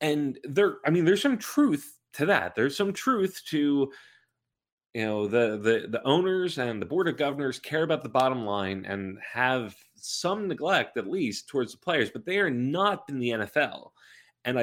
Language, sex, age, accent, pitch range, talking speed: English, male, 30-49, American, 100-150 Hz, 190 wpm